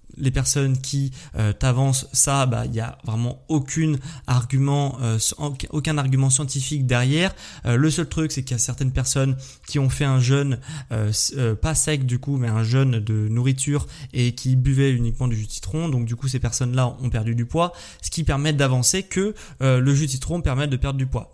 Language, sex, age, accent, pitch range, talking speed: French, male, 20-39, French, 125-145 Hz, 215 wpm